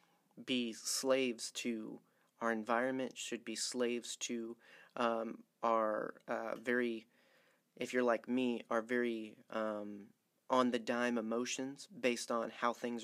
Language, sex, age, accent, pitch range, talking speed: English, male, 30-49, American, 115-130 Hz, 120 wpm